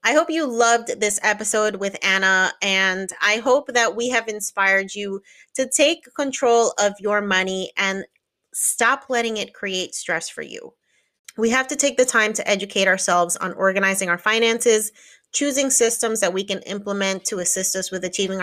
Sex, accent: female, American